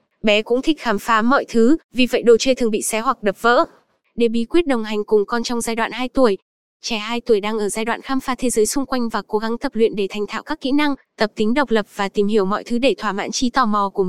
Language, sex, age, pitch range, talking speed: Vietnamese, female, 10-29, 220-265 Hz, 295 wpm